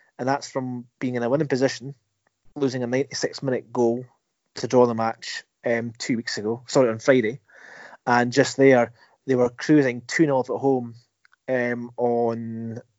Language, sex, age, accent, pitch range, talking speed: English, male, 30-49, British, 120-140 Hz, 155 wpm